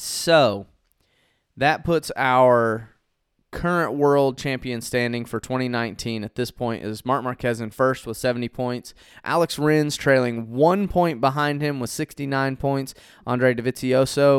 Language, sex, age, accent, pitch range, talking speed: English, male, 20-39, American, 115-140 Hz, 140 wpm